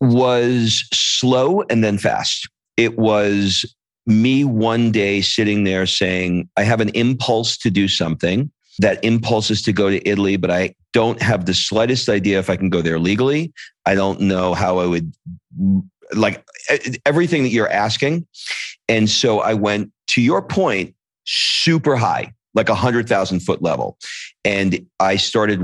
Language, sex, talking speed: English, male, 160 wpm